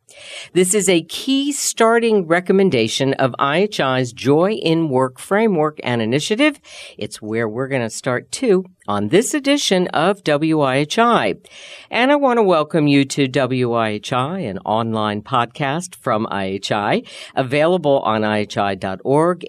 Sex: female